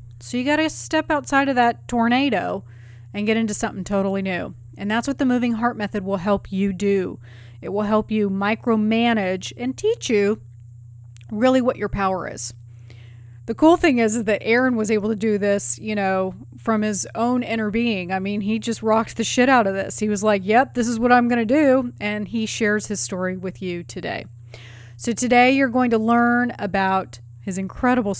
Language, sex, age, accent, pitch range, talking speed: English, female, 30-49, American, 185-240 Hz, 205 wpm